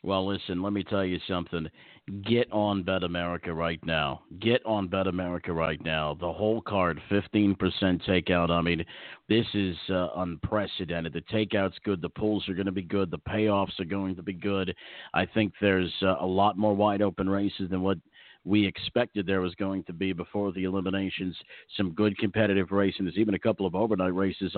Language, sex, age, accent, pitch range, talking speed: English, male, 50-69, American, 85-100 Hz, 195 wpm